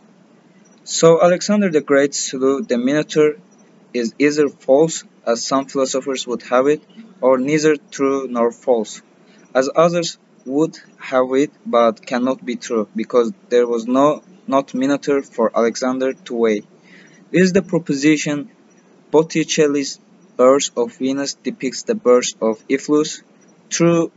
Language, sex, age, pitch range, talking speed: English, male, 20-39, 125-165 Hz, 135 wpm